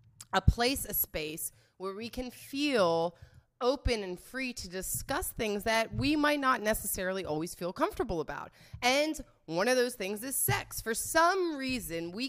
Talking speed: 165 wpm